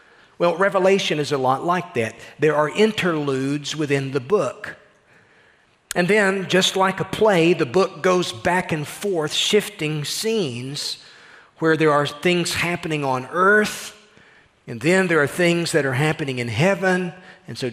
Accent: American